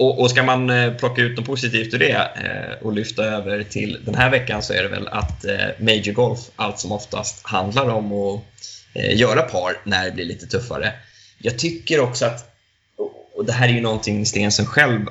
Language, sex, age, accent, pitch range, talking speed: Swedish, male, 20-39, native, 105-120 Hz, 190 wpm